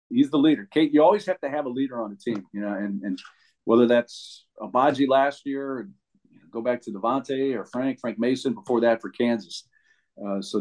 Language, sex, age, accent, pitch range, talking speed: English, male, 40-59, American, 115-140 Hz, 210 wpm